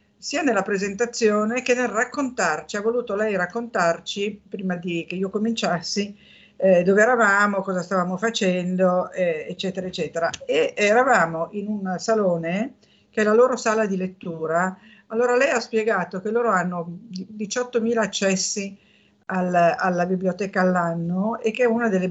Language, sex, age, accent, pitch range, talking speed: Italian, female, 50-69, native, 185-225 Hz, 145 wpm